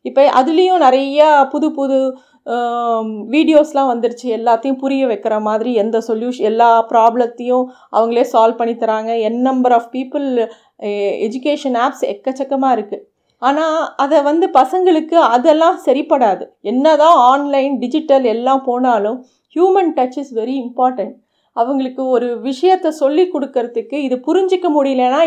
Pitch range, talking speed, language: 235-295 Hz, 120 wpm, Tamil